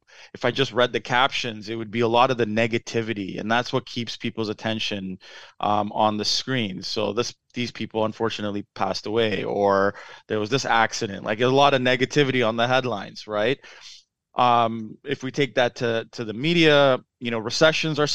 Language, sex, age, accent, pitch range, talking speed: English, male, 20-39, American, 110-130 Hz, 190 wpm